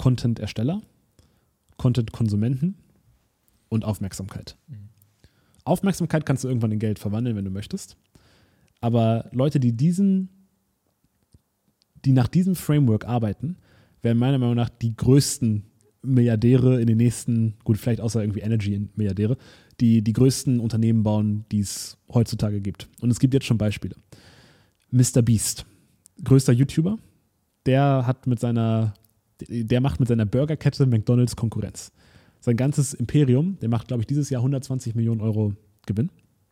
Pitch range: 105-130 Hz